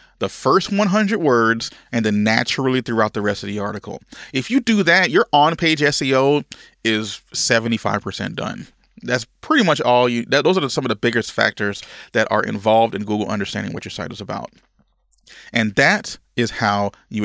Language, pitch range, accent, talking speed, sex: English, 110-145 Hz, American, 180 wpm, male